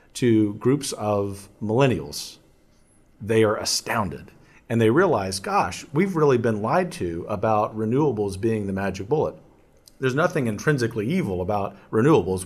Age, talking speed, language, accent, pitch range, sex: 40-59, 135 wpm, English, American, 90-120 Hz, male